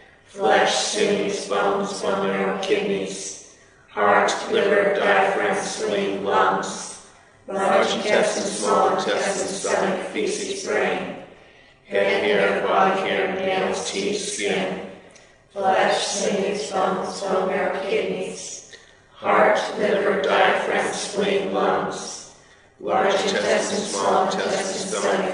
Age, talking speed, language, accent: 60-79, 95 wpm, English, American